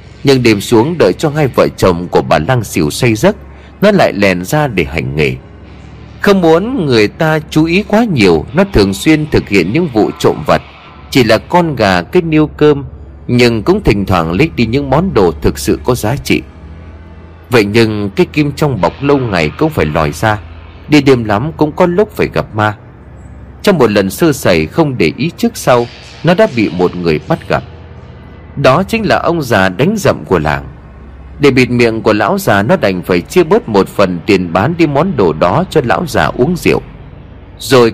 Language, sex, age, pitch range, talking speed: Vietnamese, male, 30-49, 95-155 Hz, 205 wpm